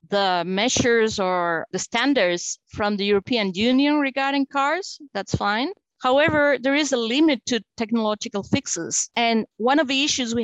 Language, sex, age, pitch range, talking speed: English, female, 50-69, 210-265 Hz, 155 wpm